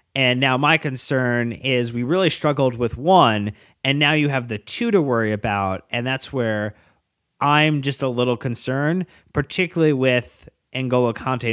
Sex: male